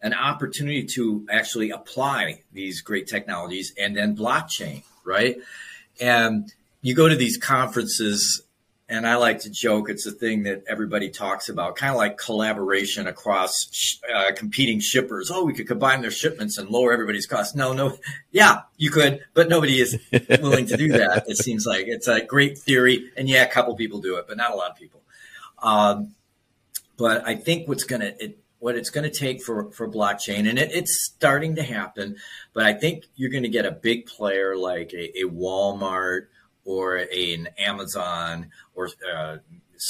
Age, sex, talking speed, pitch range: 40-59, male, 180 wpm, 105-130 Hz